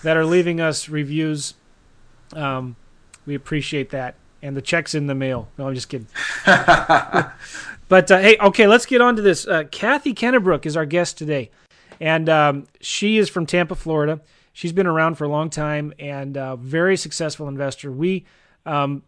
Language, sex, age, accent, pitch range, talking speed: English, male, 30-49, American, 140-175 Hz, 175 wpm